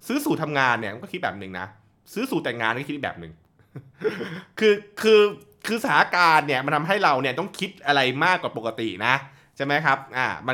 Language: Thai